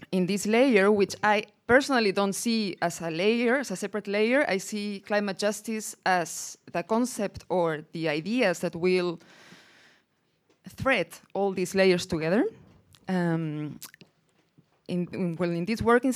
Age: 20-39